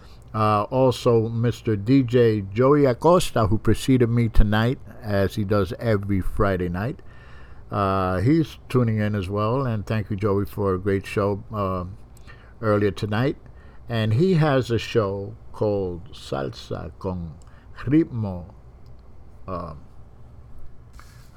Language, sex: English, male